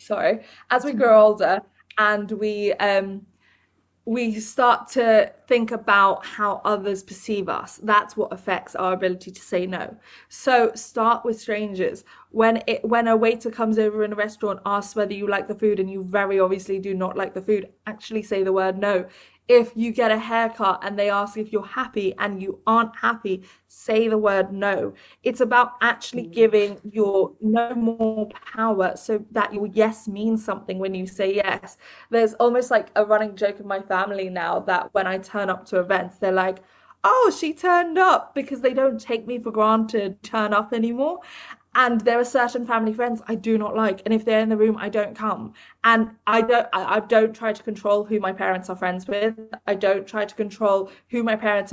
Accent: British